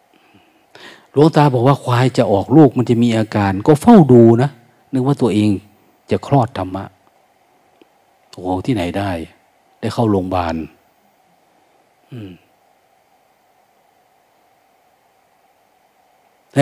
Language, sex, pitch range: Thai, male, 105-145 Hz